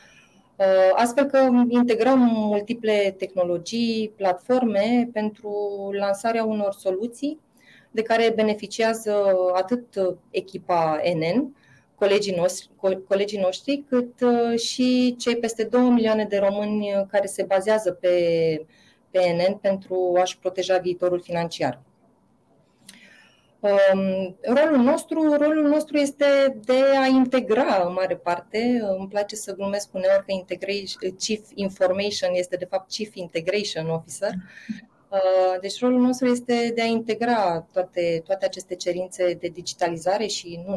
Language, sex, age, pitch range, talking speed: Romanian, female, 30-49, 185-235 Hz, 120 wpm